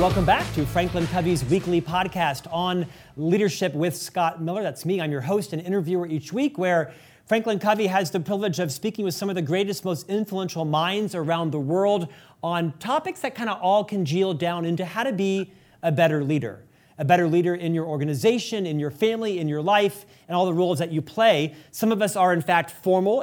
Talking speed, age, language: 210 wpm, 40-59, English